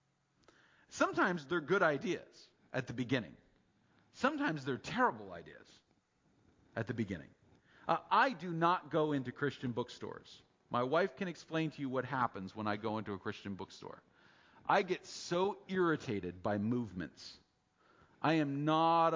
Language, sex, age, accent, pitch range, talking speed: English, male, 40-59, American, 120-175 Hz, 145 wpm